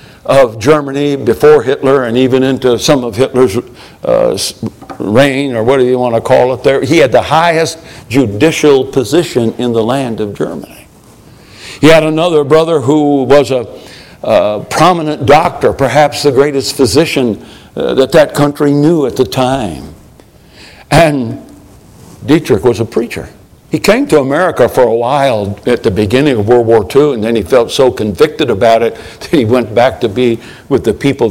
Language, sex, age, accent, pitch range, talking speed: English, male, 60-79, American, 115-150 Hz, 170 wpm